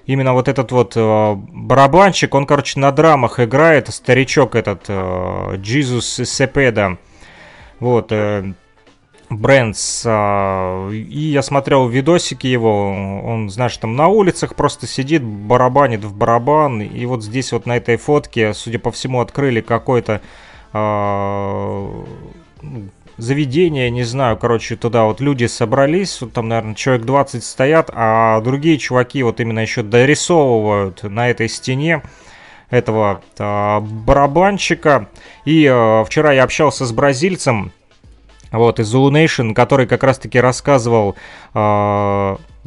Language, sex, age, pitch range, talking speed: Russian, male, 30-49, 110-140 Hz, 120 wpm